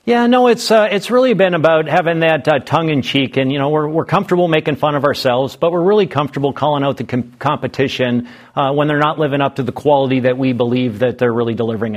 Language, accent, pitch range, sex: English, American, 130-170 Hz, male